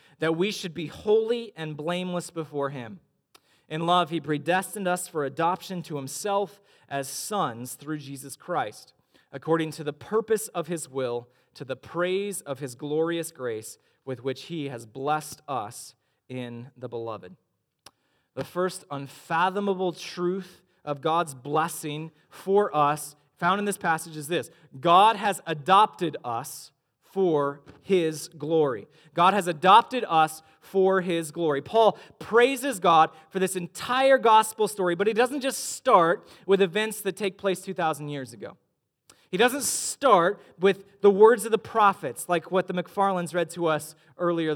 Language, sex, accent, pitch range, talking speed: English, male, American, 150-200 Hz, 150 wpm